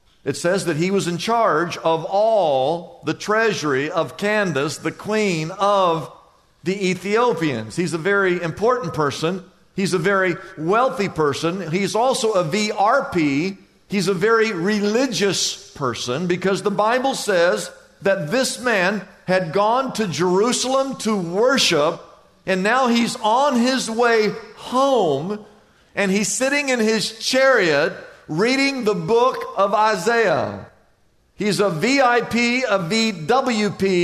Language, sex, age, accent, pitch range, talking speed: English, male, 50-69, American, 165-230 Hz, 130 wpm